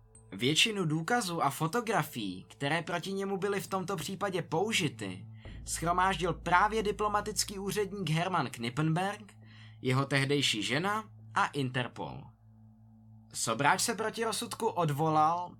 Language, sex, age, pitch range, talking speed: Czech, male, 20-39, 120-195 Hz, 110 wpm